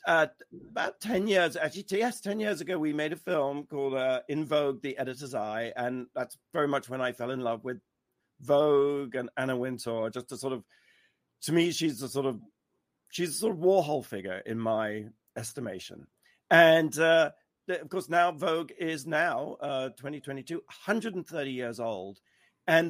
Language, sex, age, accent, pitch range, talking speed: English, male, 50-69, British, 140-200 Hz, 175 wpm